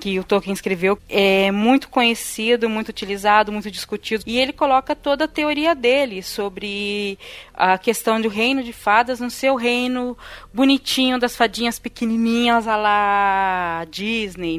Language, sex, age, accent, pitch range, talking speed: Portuguese, female, 20-39, Brazilian, 205-265 Hz, 145 wpm